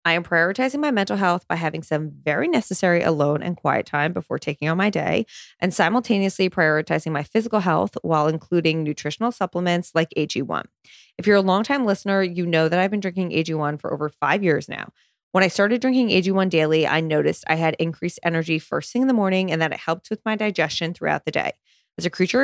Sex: female